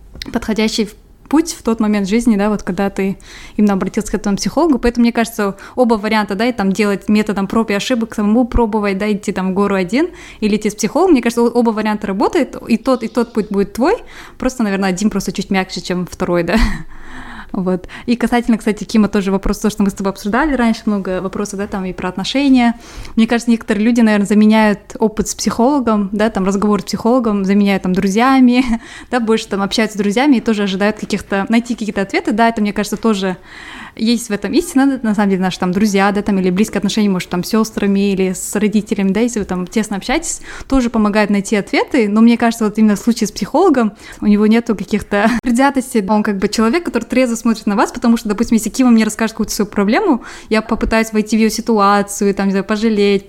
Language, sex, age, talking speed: Russian, female, 20-39, 215 wpm